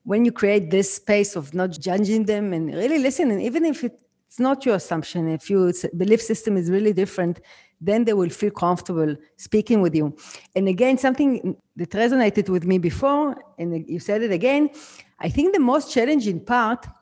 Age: 40-59